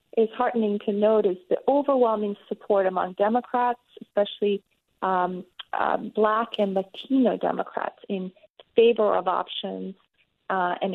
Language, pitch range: English, 185-225 Hz